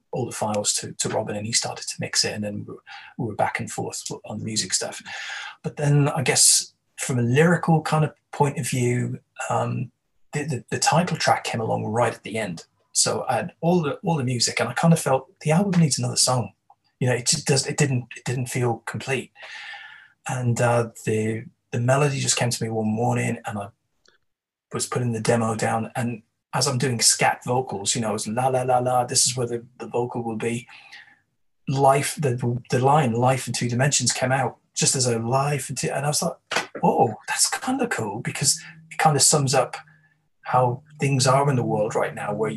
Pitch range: 115-145 Hz